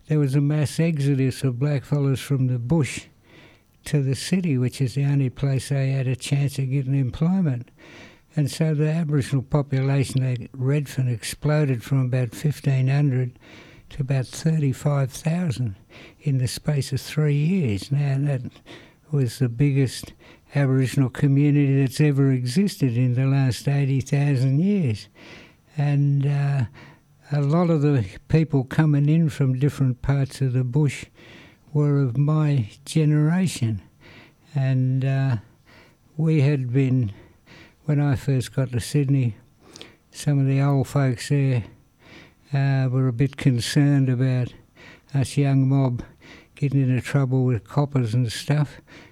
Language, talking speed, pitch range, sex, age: English, 145 wpm, 130-145 Hz, male, 60-79